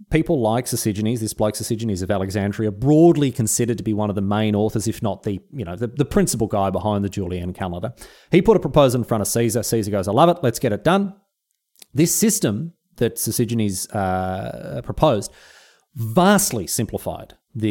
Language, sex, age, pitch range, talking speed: English, male, 30-49, 105-160 Hz, 190 wpm